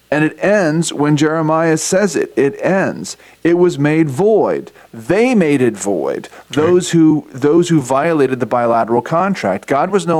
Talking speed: 165 wpm